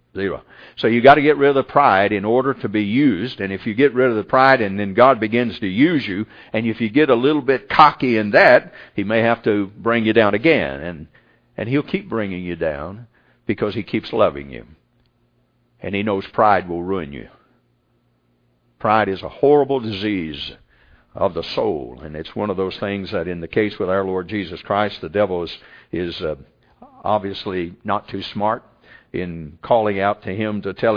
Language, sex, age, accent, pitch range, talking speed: English, male, 60-79, American, 85-120 Hz, 205 wpm